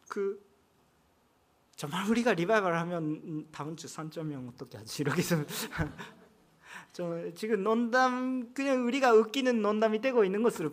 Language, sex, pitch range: Korean, male, 180-285 Hz